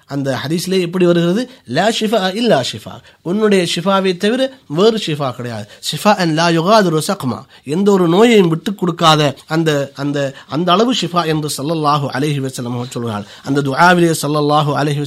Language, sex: Tamil, male